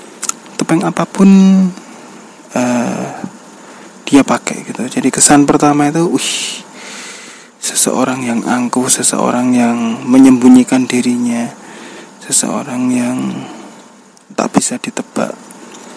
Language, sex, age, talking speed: Indonesian, male, 20-39, 85 wpm